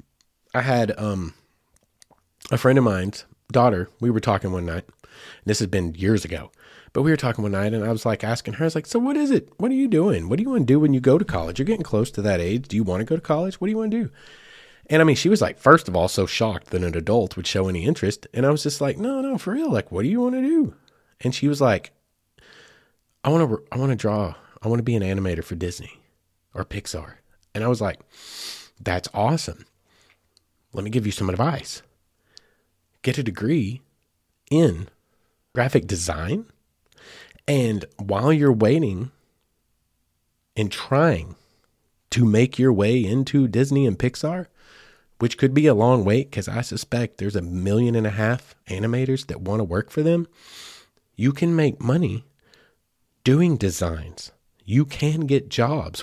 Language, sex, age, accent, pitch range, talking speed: English, male, 30-49, American, 95-145 Hz, 205 wpm